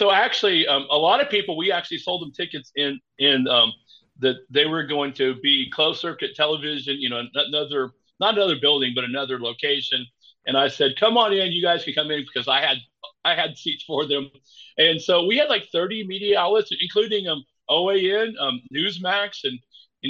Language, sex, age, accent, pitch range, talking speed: English, male, 40-59, American, 130-170 Hz, 200 wpm